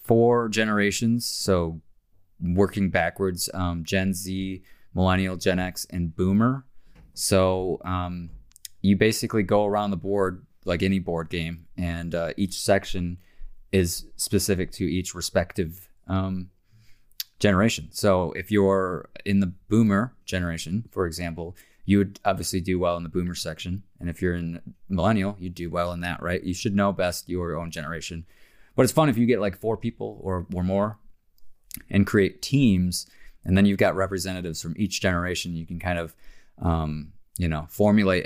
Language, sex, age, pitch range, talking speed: English, male, 20-39, 85-100 Hz, 160 wpm